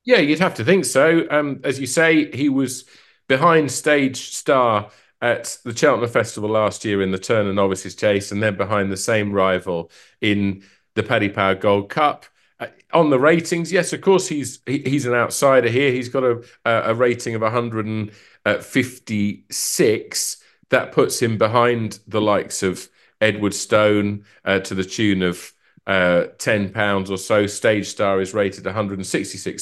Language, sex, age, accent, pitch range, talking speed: English, male, 40-59, British, 95-120 Hz, 165 wpm